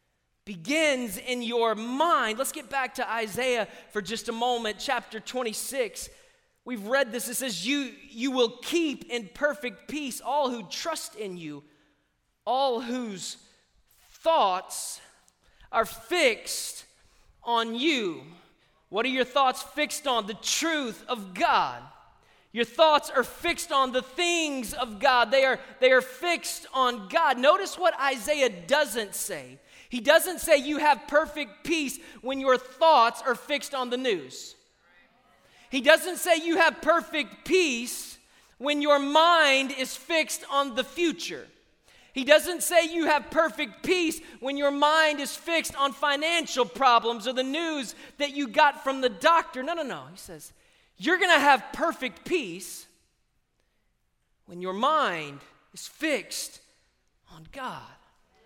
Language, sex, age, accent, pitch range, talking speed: English, male, 20-39, American, 240-315 Hz, 145 wpm